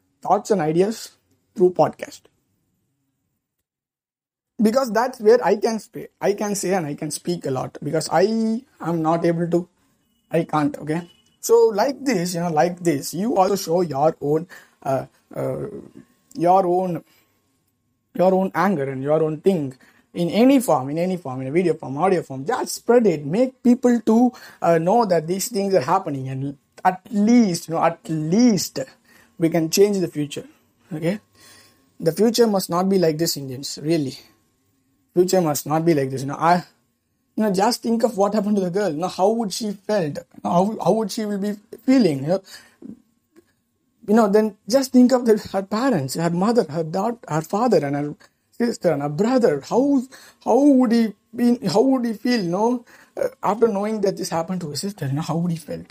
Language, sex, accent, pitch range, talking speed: English, male, Indian, 160-225 Hz, 190 wpm